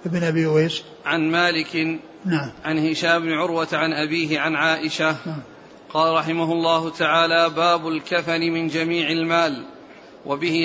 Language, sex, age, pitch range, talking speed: Arabic, male, 40-59, 160-170 Hz, 105 wpm